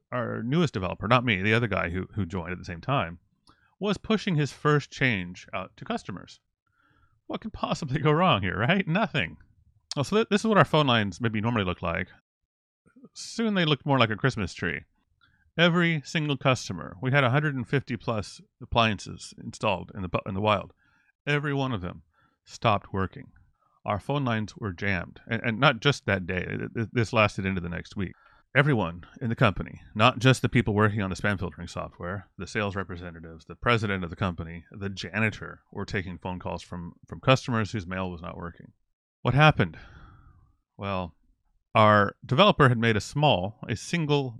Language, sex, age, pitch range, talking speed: English, male, 30-49, 95-140 Hz, 180 wpm